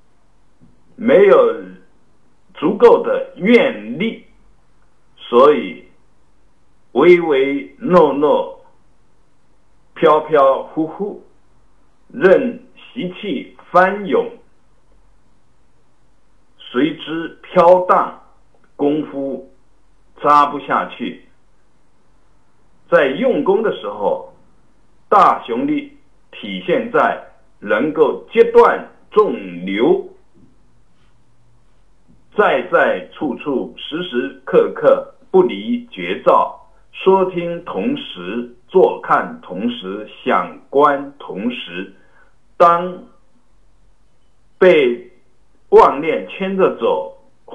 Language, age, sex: Chinese, 60-79, male